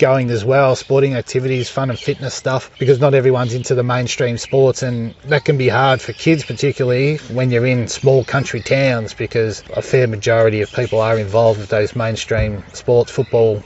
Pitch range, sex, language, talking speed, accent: 120-140 Hz, male, English, 190 wpm, Australian